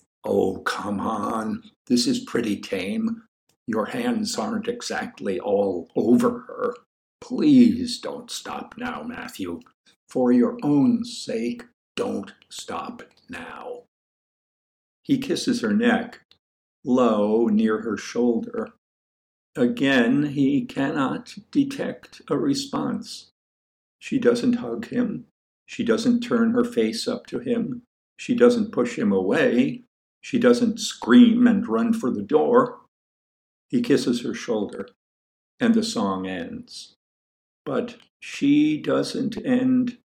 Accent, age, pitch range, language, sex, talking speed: American, 60-79, 220-250 Hz, English, male, 115 wpm